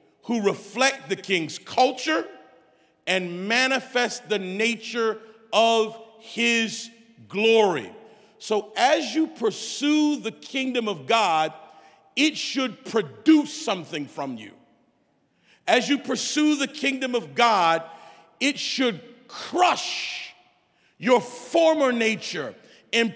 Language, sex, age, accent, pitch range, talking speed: English, male, 40-59, American, 200-260 Hz, 105 wpm